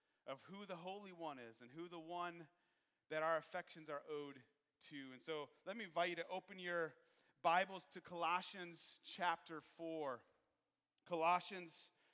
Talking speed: 155 wpm